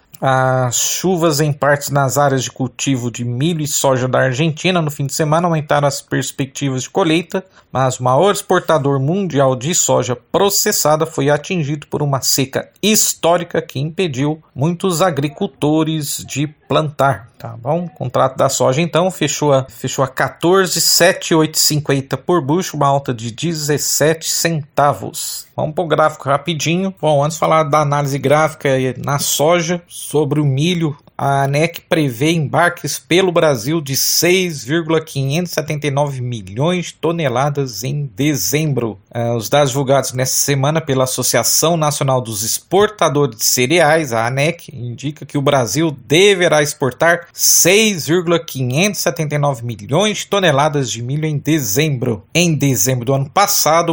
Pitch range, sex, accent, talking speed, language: 135-165 Hz, male, Brazilian, 135 wpm, Portuguese